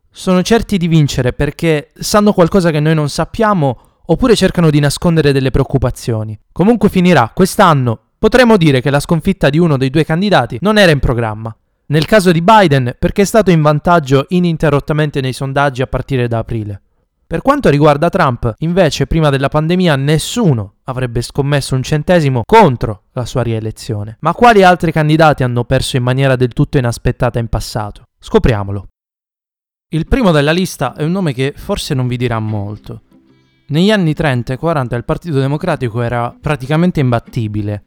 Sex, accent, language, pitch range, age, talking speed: male, native, Italian, 125-165 Hz, 20-39, 165 wpm